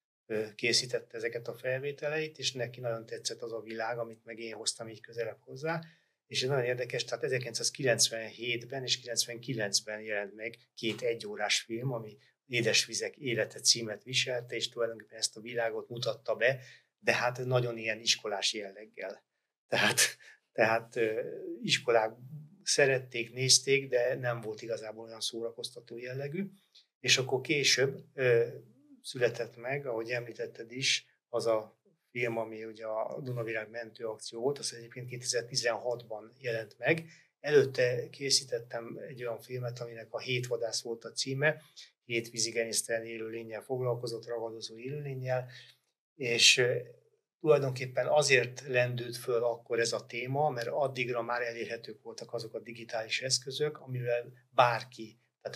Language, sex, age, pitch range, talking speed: Hungarian, male, 30-49, 115-135 Hz, 135 wpm